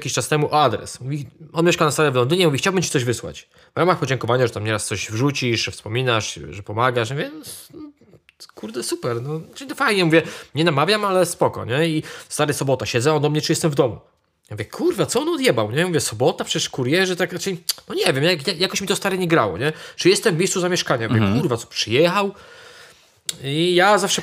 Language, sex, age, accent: Polish, male, 20-39, native